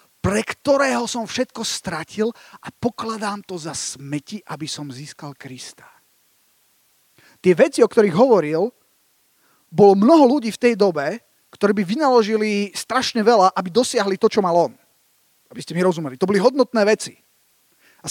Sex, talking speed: male, 150 wpm